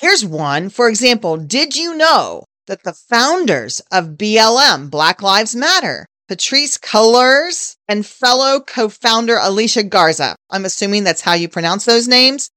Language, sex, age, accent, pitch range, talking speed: English, female, 40-59, American, 195-285 Hz, 145 wpm